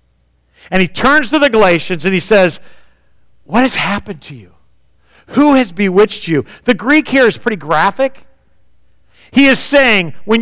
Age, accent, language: 50-69, American, English